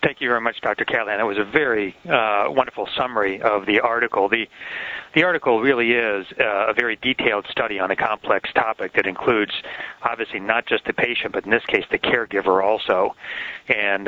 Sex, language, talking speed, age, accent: male, English, 190 wpm, 40-59, American